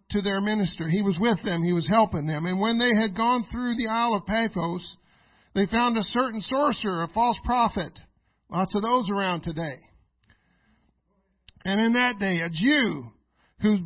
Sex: male